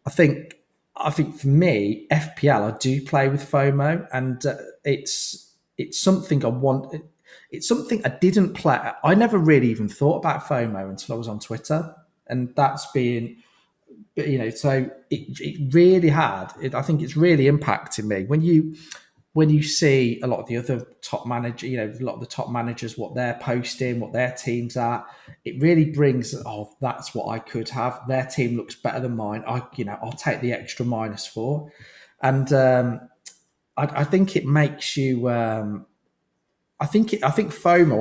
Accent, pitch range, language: British, 120-150 Hz, English